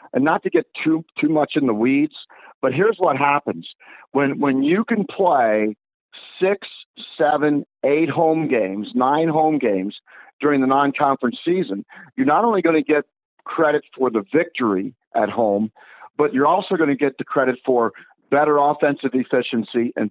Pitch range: 120-160 Hz